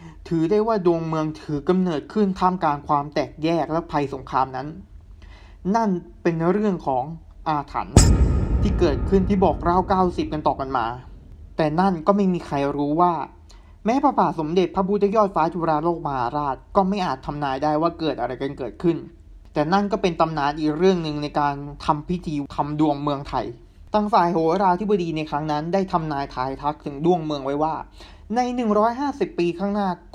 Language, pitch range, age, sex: Thai, 150-185 Hz, 20-39, male